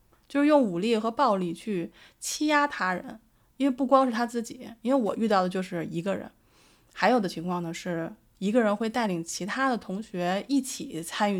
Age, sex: 20-39, female